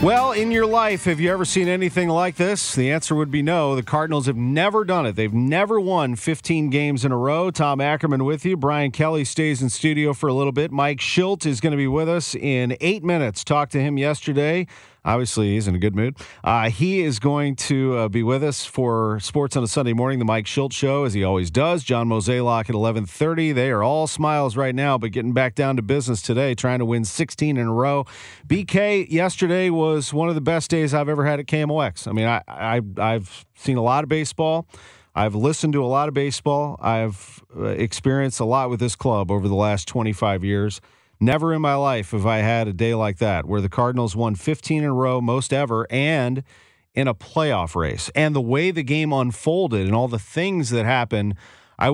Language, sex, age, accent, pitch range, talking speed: English, male, 40-59, American, 115-155 Hz, 220 wpm